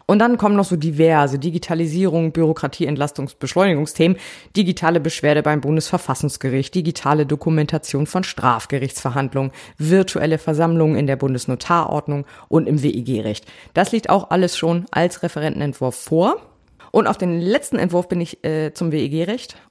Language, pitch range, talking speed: German, 145-180 Hz, 130 wpm